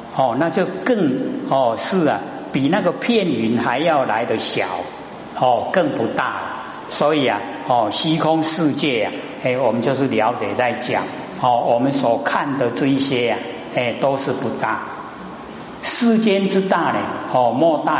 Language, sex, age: Chinese, male, 60-79